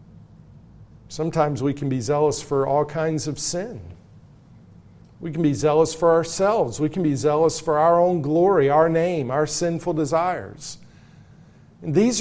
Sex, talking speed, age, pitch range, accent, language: male, 145 wpm, 50-69, 135-165 Hz, American, English